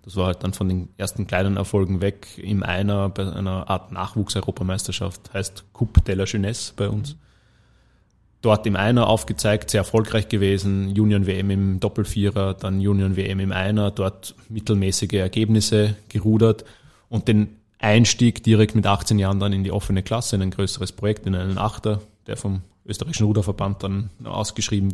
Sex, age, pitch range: male, 20-39, 100-110 Hz